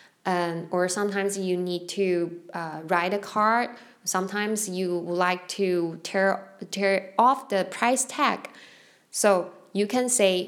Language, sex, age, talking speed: English, female, 10-29, 145 wpm